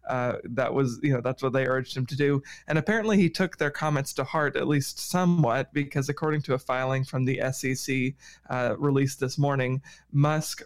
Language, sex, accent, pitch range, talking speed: English, male, American, 130-145 Hz, 205 wpm